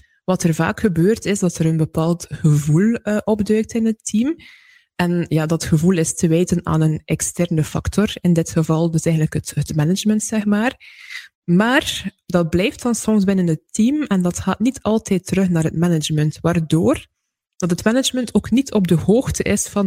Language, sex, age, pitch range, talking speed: Dutch, female, 20-39, 165-220 Hz, 190 wpm